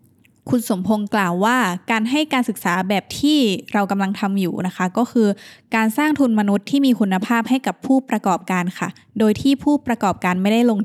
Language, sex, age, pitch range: Thai, female, 20-39, 185-235 Hz